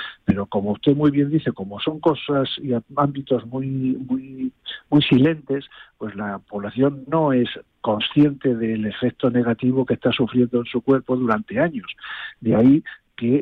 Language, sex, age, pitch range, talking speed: Spanish, male, 50-69, 110-130 Hz, 155 wpm